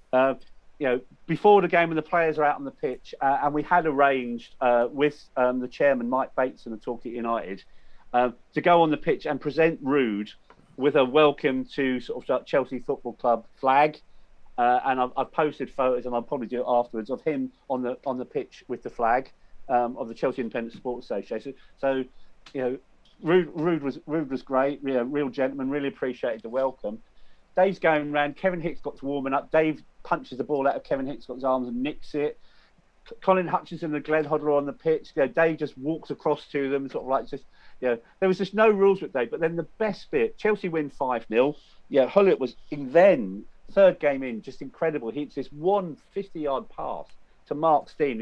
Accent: British